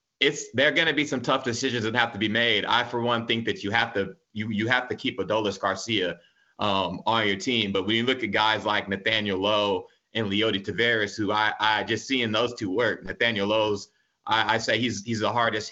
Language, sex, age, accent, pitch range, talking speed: English, male, 30-49, American, 105-120 Hz, 235 wpm